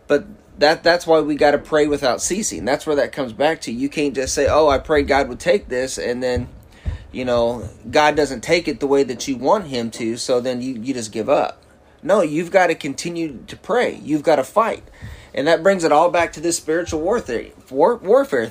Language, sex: English, male